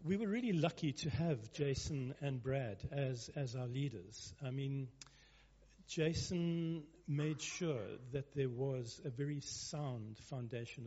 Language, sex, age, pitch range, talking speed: English, male, 50-69, 125-160 Hz, 140 wpm